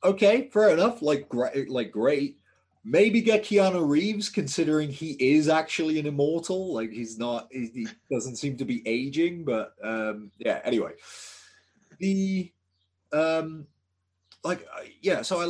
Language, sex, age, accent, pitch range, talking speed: English, male, 30-49, British, 100-165 Hz, 140 wpm